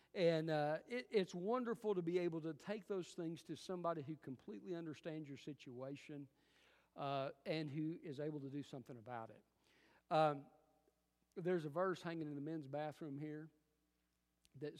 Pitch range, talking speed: 140-185 Hz, 160 wpm